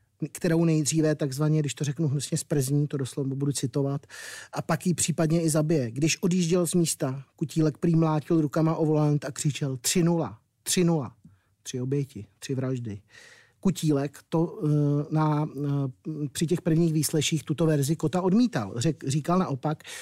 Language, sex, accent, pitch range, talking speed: Czech, male, native, 145-170 Hz, 155 wpm